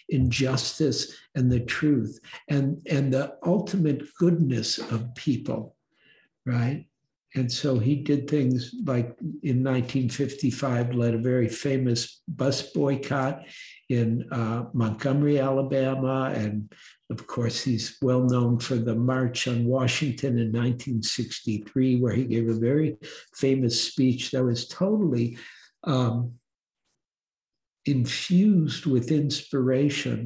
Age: 60-79